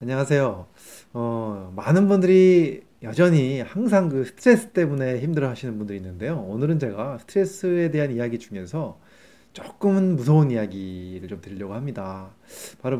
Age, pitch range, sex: 30-49, 110-165 Hz, male